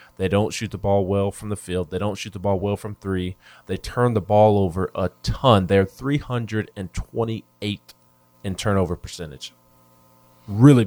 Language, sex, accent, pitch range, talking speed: English, male, American, 85-105 Hz, 165 wpm